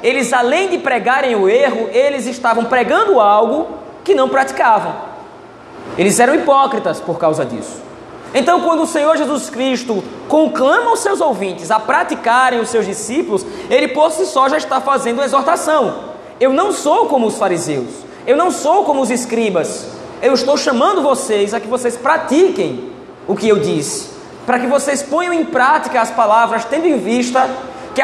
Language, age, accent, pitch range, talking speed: Portuguese, 20-39, Brazilian, 230-310 Hz, 170 wpm